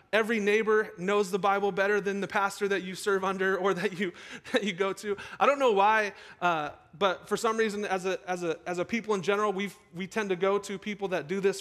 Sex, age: male, 30-49